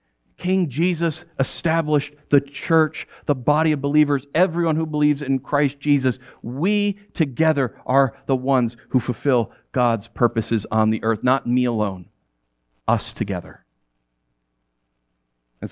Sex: male